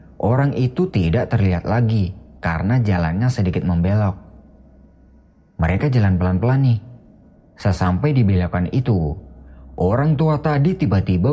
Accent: native